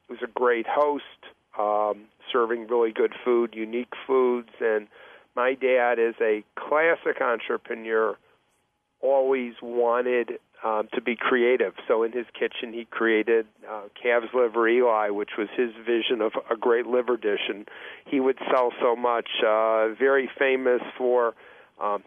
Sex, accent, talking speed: male, American, 145 wpm